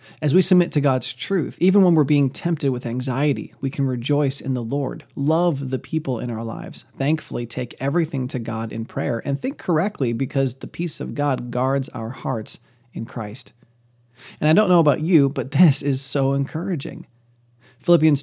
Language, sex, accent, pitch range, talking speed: English, male, American, 130-165 Hz, 190 wpm